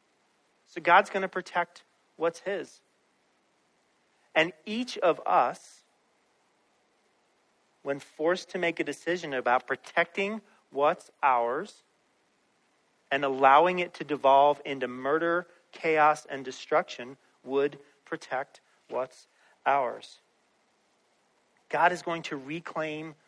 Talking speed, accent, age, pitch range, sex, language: 105 wpm, American, 40-59, 140-175 Hz, male, English